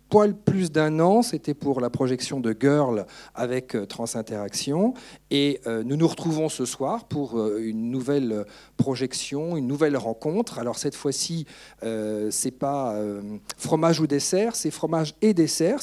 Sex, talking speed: male, 160 wpm